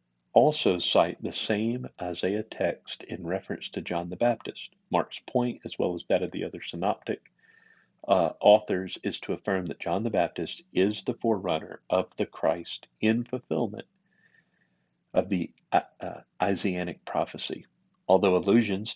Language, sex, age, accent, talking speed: English, male, 40-59, American, 150 wpm